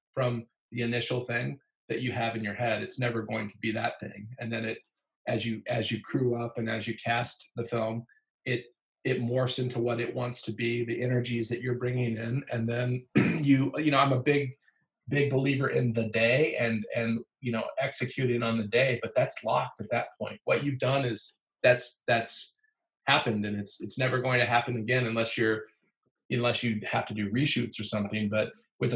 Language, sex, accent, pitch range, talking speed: English, male, American, 115-130 Hz, 210 wpm